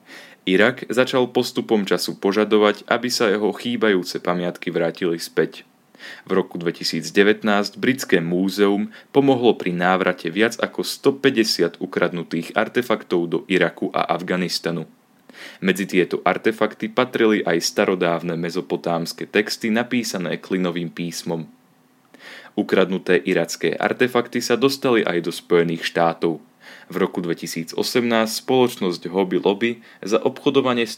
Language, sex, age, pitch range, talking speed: Slovak, male, 30-49, 85-115 Hz, 110 wpm